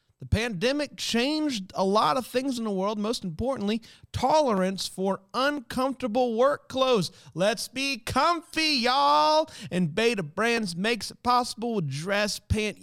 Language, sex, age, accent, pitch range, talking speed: English, male, 40-59, American, 170-235 Hz, 140 wpm